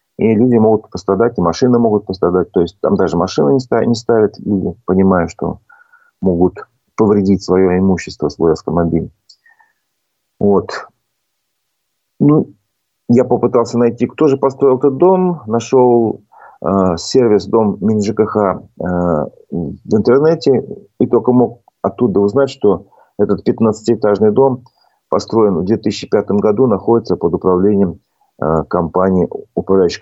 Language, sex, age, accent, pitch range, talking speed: Russian, male, 40-59, native, 95-125 Hz, 120 wpm